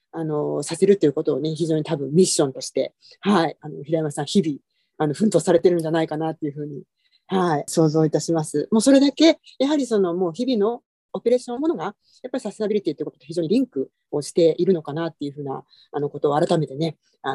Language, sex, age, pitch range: Japanese, female, 40-59, 155-235 Hz